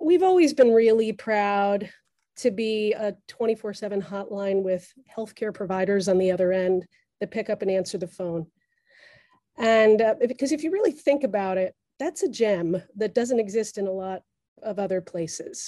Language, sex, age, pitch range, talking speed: English, female, 30-49, 190-230 Hz, 175 wpm